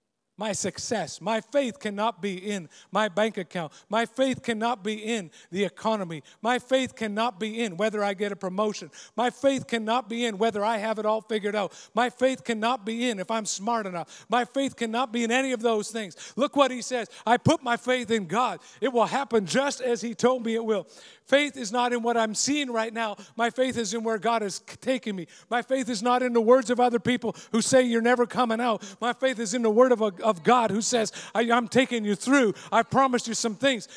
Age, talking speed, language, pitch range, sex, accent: 50-69, 235 wpm, English, 215-250 Hz, male, American